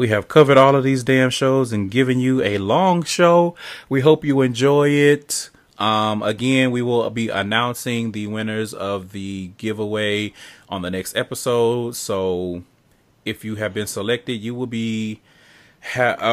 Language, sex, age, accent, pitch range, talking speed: English, male, 30-49, American, 105-135 Hz, 160 wpm